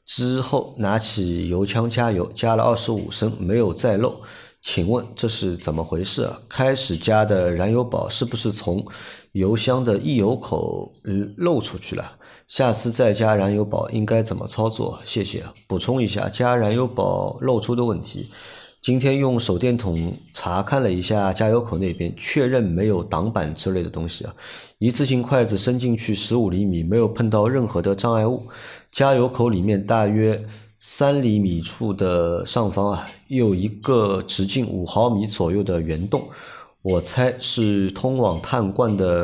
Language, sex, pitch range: Chinese, male, 95-120 Hz